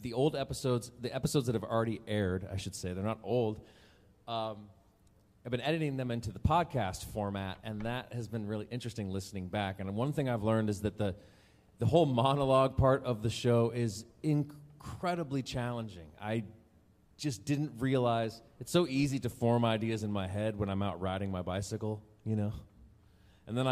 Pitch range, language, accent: 100-125 Hz, English, American